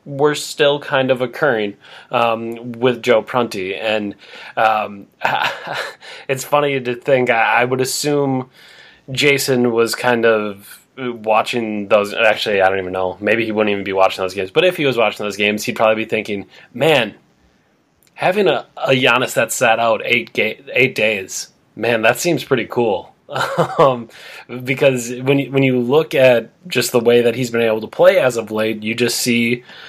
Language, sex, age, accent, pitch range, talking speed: English, male, 20-39, American, 110-130 Hz, 180 wpm